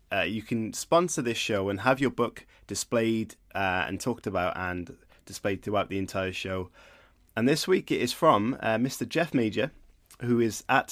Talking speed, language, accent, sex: 185 wpm, English, British, male